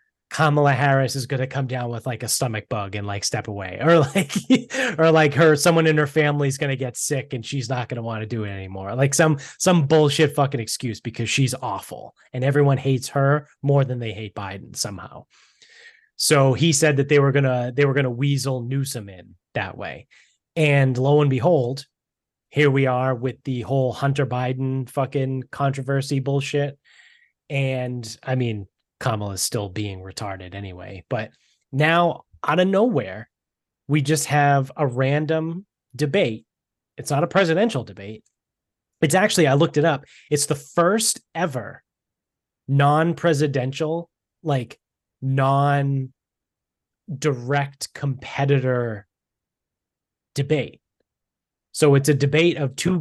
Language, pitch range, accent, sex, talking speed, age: English, 125-150 Hz, American, male, 155 wpm, 20-39